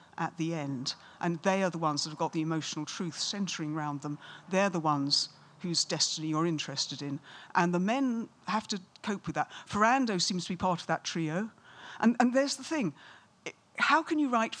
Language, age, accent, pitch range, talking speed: English, 50-69, British, 160-220 Hz, 205 wpm